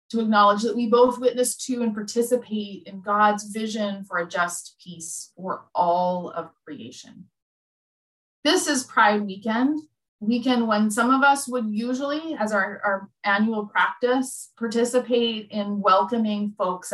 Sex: female